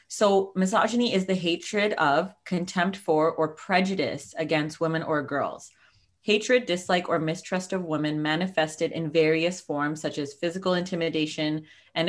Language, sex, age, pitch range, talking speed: English, female, 20-39, 155-185 Hz, 145 wpm